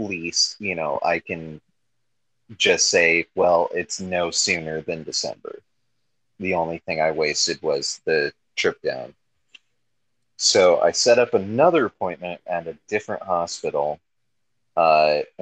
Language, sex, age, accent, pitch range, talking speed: English, male, 30-49, American, 80-115 Hz, 130 wpm